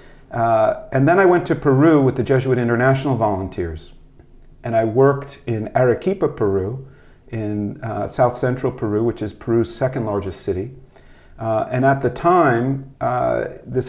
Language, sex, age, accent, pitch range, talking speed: English, male, 50-69, American, 105-130 Hz, 150 wpm